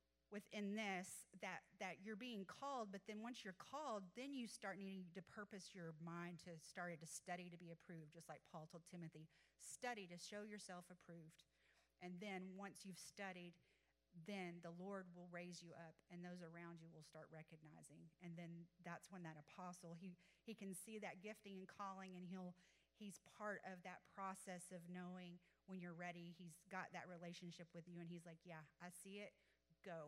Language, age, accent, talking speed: English, 30-49, American, 190 wpm